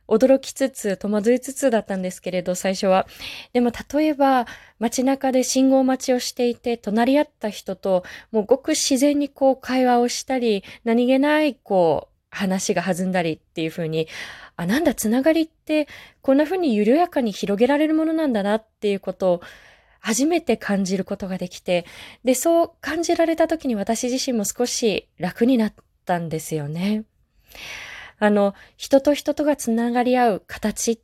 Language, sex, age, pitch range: Japanese, female, 20-39, 190-265 Hz